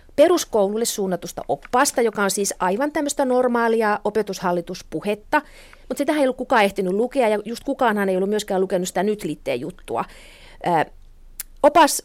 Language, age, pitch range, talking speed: Finnish, 40-59, 190-250 Hz, 145 wpm